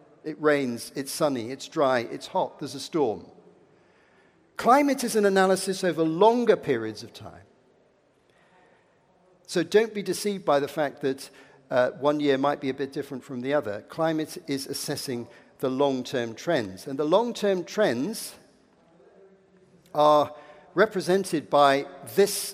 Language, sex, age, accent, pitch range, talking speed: English, male, 50-69, British, 140-185 Hz, 140 wpm